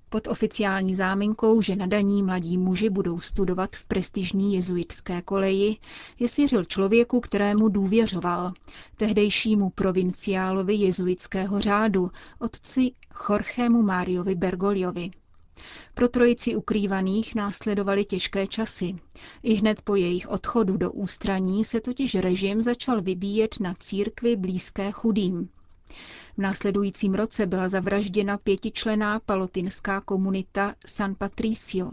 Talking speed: 110 wpm